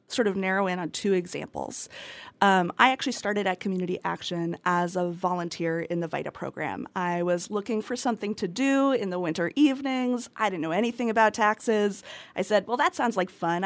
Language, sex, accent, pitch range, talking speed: English, female, American, 175-210 Hz, 200 wpm